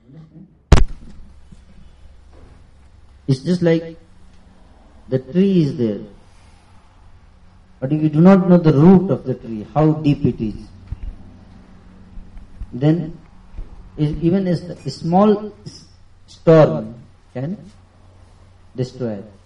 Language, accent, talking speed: Hindi, native, 95 wpm